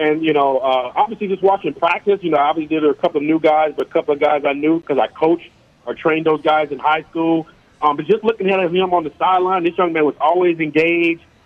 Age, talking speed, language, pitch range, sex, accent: 40-59, 260 wpm, English, 150-180 Hz, male, American